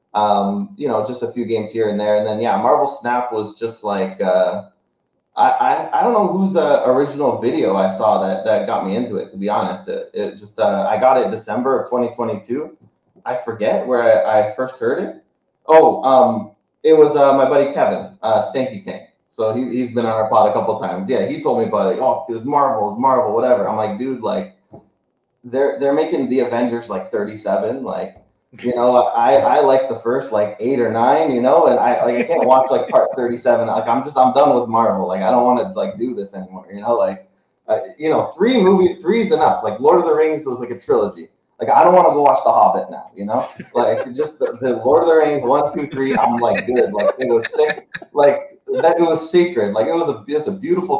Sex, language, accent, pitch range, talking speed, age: male, English, American, 110-155 Hz, 240 wpm, 20-39